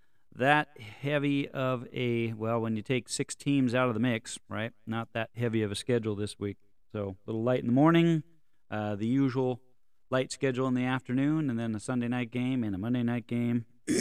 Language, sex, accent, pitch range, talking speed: English, male, American, 110-140 Hz, 210 wpm